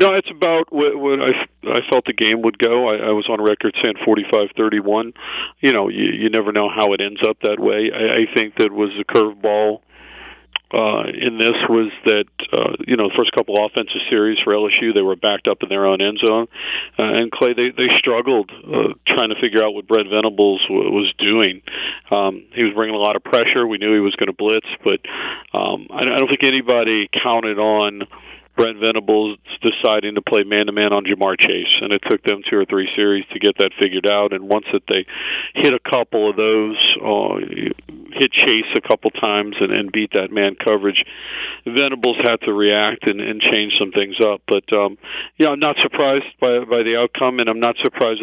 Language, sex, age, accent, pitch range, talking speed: English, male, 40-59, American, 105-115 Hz, 210 wpm